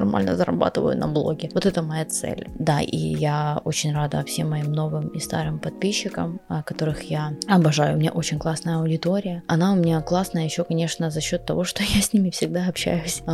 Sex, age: female, 20-39